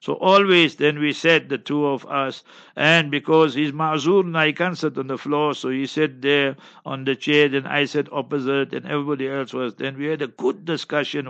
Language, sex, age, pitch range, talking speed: English, male, 60-79, 135-155 Hz, 210 wpm